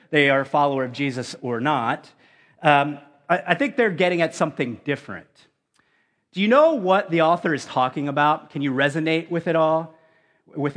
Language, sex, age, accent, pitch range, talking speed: English, male, 30-49, American, 150-200 Hz, 185 wpm